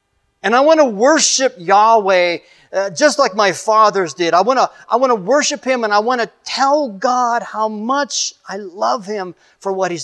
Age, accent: 40-59, American